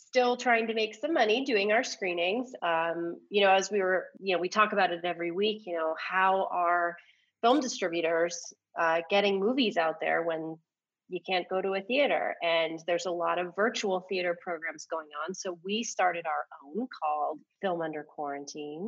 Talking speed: 190 wpm